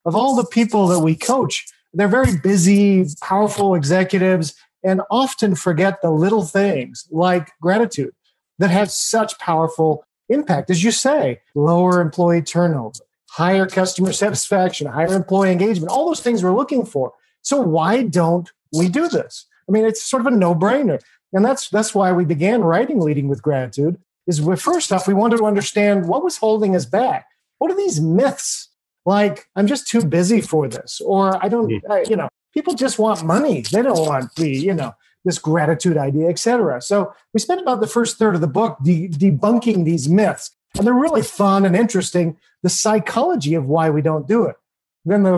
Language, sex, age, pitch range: English, male, 40-59, 165-215 Hz